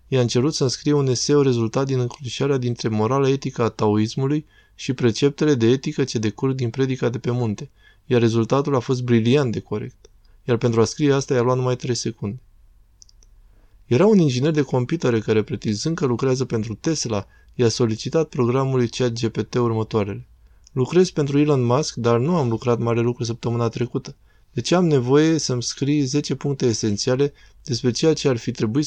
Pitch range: 115-140 Hz